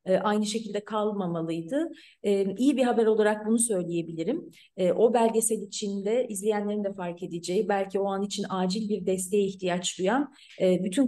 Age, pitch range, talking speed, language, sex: 30-49, 195-245 Hz, 140 wpm, Turkish, female